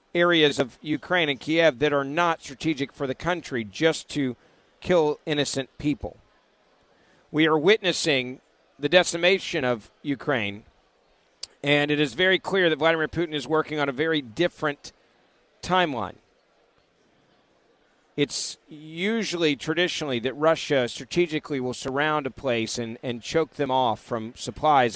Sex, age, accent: male, 40-59, American